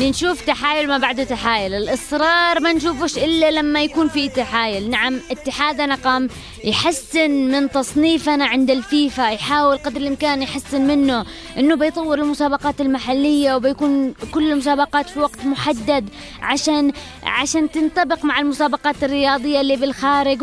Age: 20-39